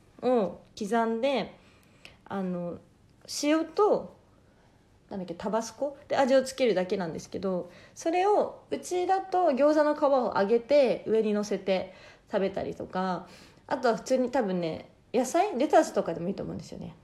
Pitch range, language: 185-265 Hz, Japanese